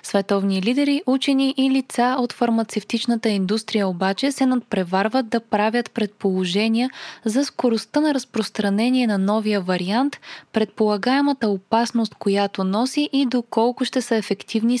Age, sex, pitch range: 20-39, female, 200-255 Hz